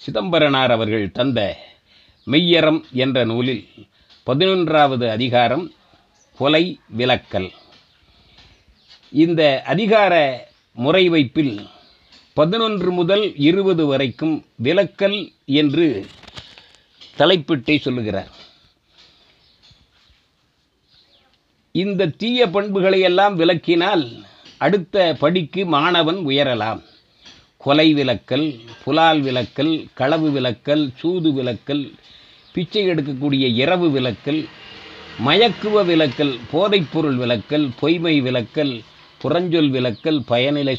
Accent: native